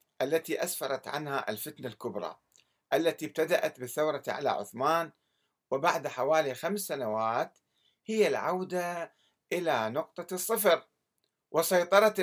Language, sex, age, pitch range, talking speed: Arabic, male, 60-79, 135-185 Hz, 100 wpm